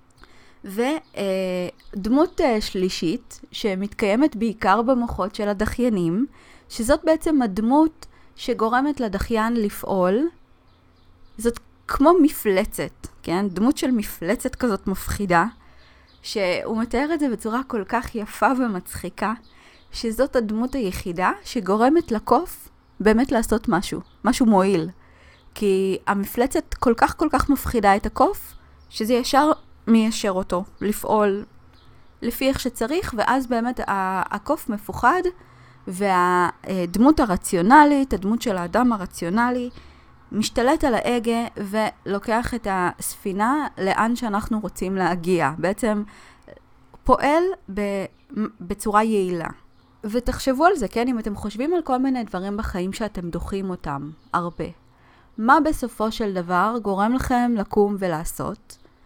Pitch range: 195-250 Hz